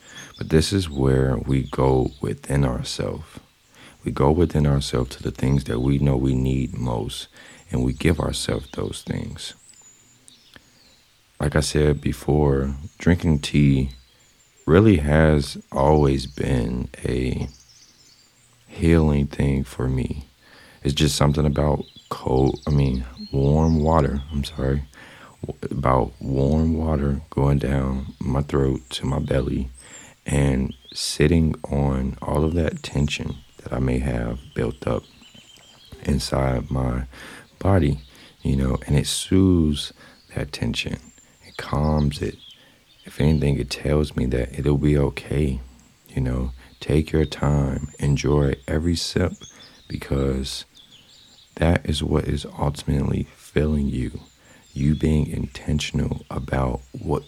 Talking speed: 125 wpm